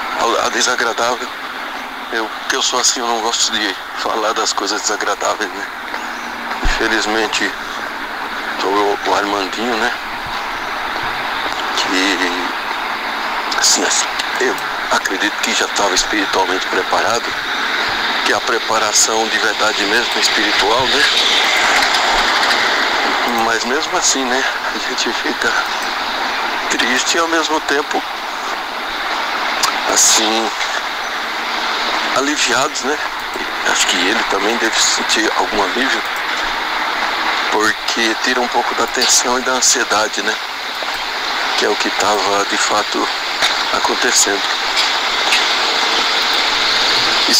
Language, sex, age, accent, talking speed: Portuguese, male, 60-79, Brazilian, 105 wpm